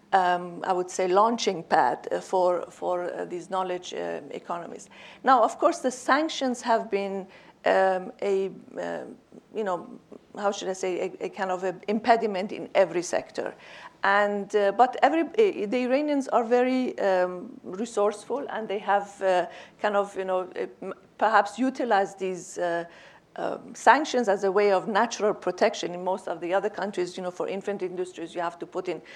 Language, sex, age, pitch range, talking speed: English, female, 50-69, 185-220 Hz, 175 wpm